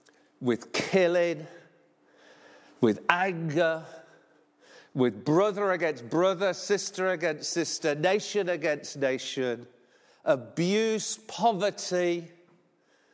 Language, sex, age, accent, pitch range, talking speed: English, male, 50-69, British, 145-195 Hz, 75 wpm